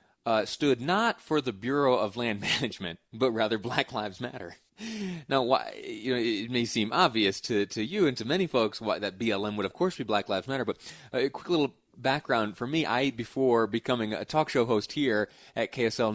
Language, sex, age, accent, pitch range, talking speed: English, male, 30-49, American, 105-135 Hz, 210 wpm